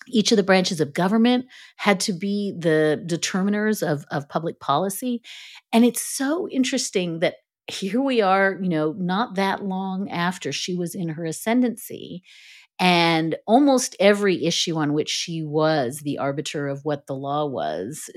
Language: English